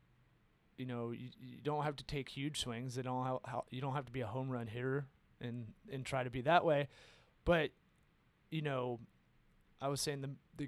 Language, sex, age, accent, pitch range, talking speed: English, male, 30-49, American, 115-140 Hz, 190 wpm